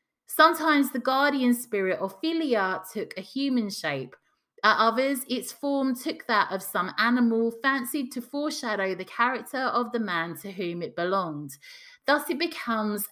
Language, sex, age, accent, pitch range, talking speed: English, female, 30-49, British, 180-270 Hz, 155 wpm